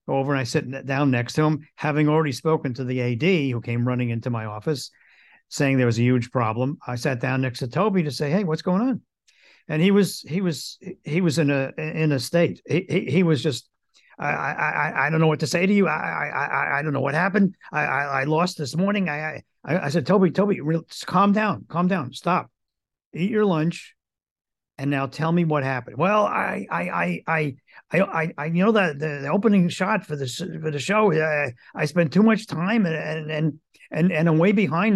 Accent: American